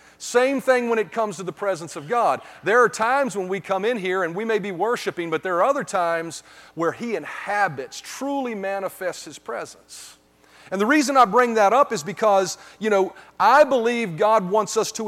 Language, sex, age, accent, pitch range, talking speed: English, male, 40-59, American, 170-230 Hz, 205 wpm